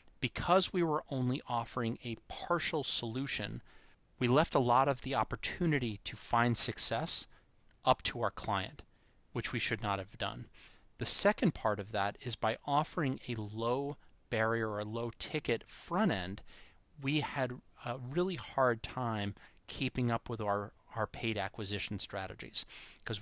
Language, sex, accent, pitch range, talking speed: English, male, American, 105-130 Hz, 150 wpm